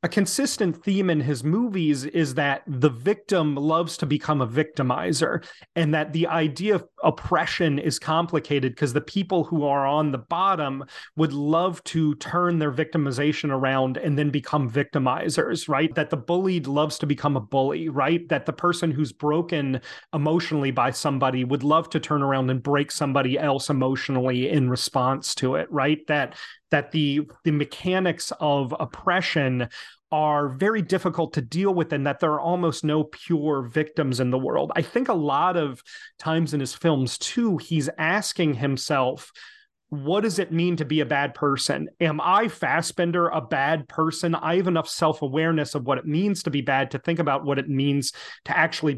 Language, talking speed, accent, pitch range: English, 180 wpm, American, 140-170 Hz